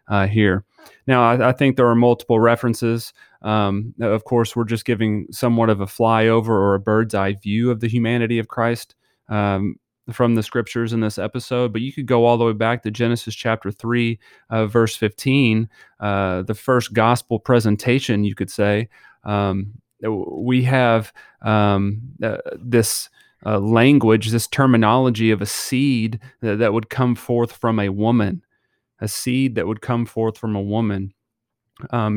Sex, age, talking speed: male, 30-49, 170 wpm